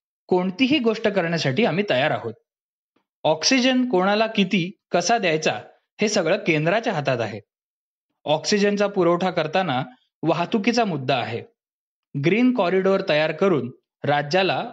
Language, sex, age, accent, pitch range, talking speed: Marathi, male, 20-39, native, 145-215 Hz, 95 wpm